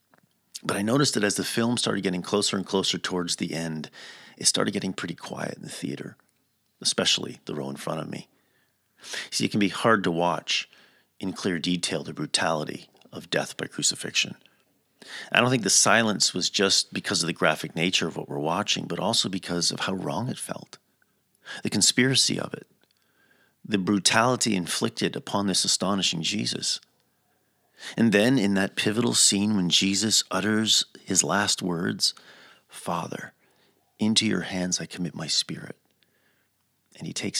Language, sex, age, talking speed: English, male, 40-59, 165 wpm